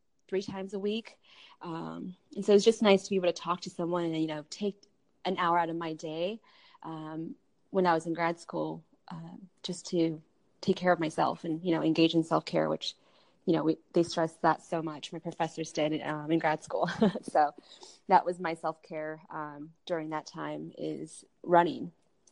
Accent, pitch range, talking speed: American, 165-210 Hz, 205 wpm